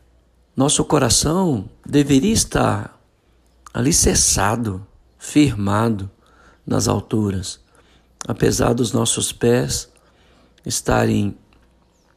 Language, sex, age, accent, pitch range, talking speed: Portuguese, male, 60-79, Brazilian, 85-135 Hz, 70 wpm